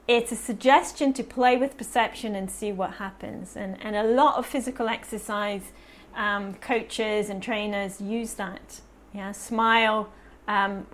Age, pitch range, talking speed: 30-49, 200-235 Hz, 150 wpm